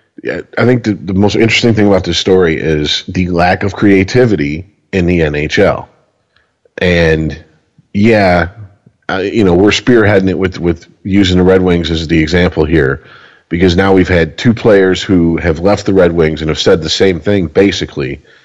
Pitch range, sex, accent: 85-105 Hz, male, American